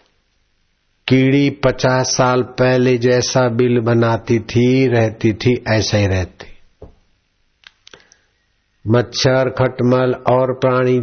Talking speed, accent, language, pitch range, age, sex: 90 wpm, native, Hindi, 100-120 Hz, 60-79, male